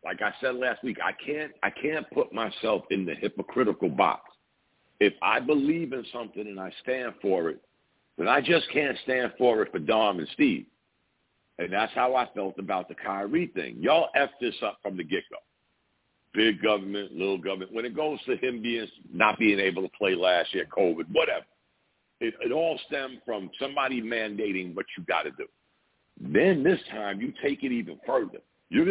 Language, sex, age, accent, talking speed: English, male, 60-79, American, 190 wpm